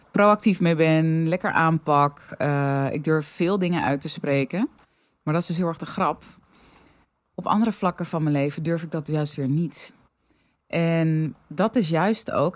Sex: female